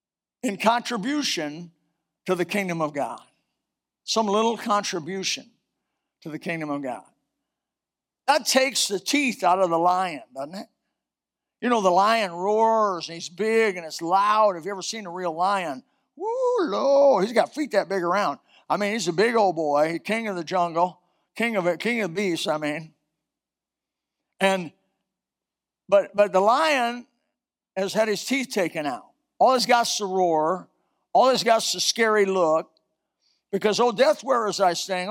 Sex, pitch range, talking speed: male, 175-235 Hz, 170 wpm